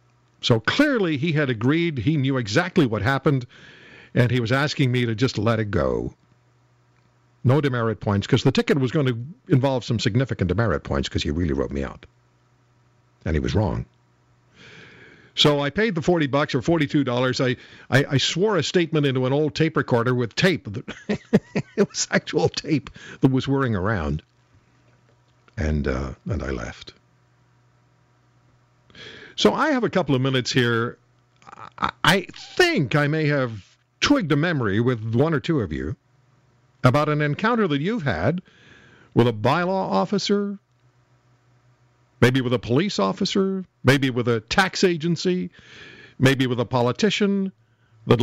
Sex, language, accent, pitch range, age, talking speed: male, English, American, 120-150 Hz, 60-79, 155 wpm